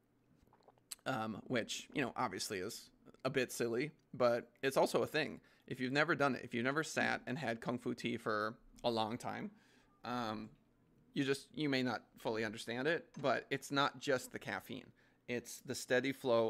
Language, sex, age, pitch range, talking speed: English, male, 20-39, 115-140 Hz, 190 wpm